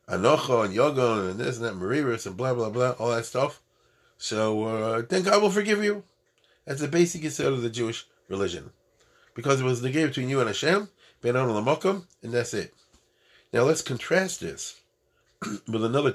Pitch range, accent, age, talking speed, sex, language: 100-140 Hz, American, 30-49, 175 wpm, male, English